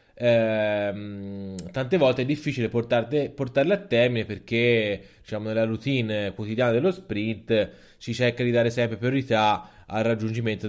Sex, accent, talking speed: male, native, 135 wpm